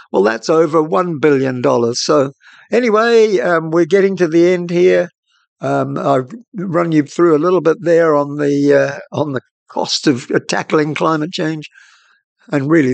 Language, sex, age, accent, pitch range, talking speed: English, male, 60-79, British, 150-200 Hz, 160 wpm